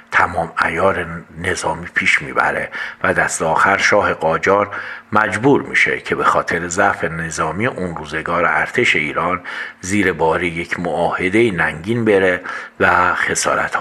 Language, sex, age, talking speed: Persian, male, 50-69, 125 wpm